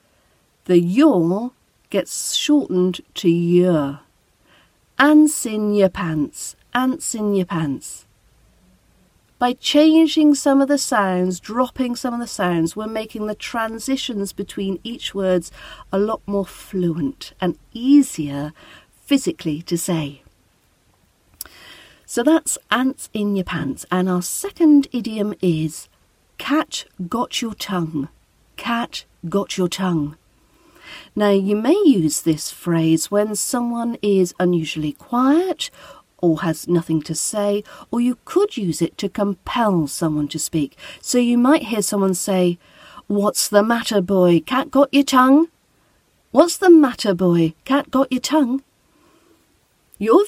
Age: 50-69